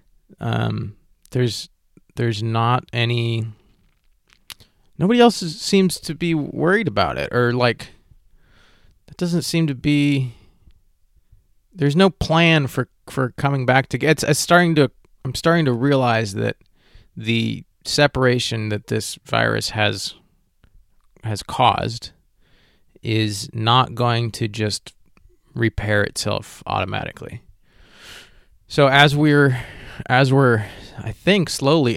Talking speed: 120 wpm